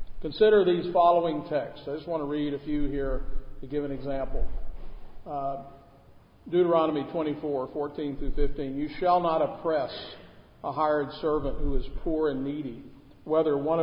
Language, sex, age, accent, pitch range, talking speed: English, male, 50-69, American, 135-170 Hz, 155 wpm